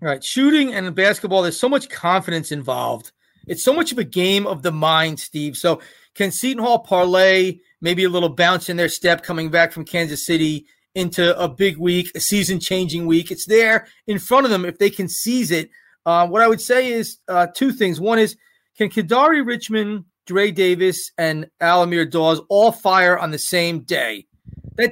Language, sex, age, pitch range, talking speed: English, male, 30-49, 175-230 Hz, 195 wpm